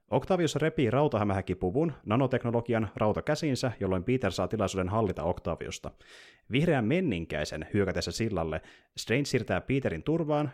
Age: 30-49